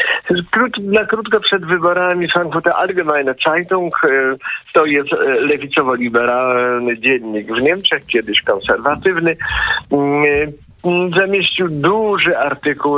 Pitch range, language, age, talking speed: 115-175 Hz, Polish, 50-69, 85 wpm